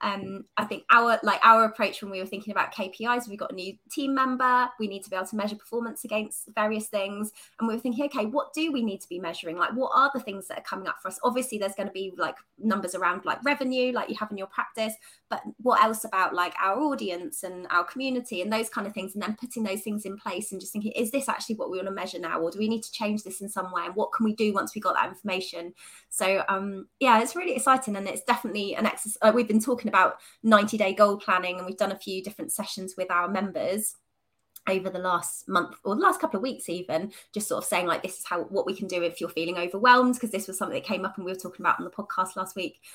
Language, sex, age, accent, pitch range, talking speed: English, female, 20-39, British, 190-225 Hz, 275 wpm